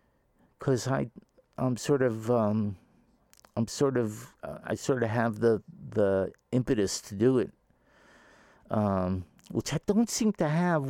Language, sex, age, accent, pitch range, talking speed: English, male, 50-69, American, 110-160 Hz, 130 wpm